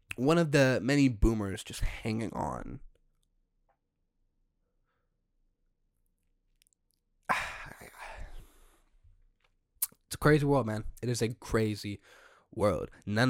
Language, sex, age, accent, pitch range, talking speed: English, male, 10-29, American, 95-125 Hz, 85 wpm